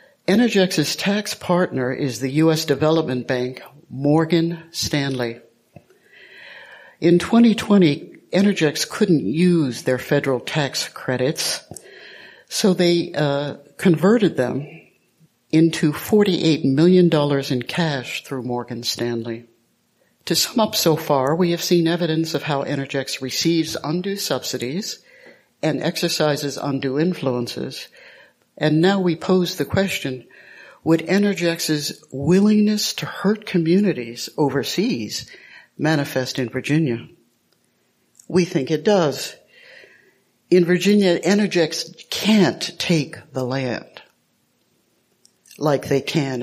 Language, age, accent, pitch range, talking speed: English, 60-79, American, 135-180 Hz, 105 wpm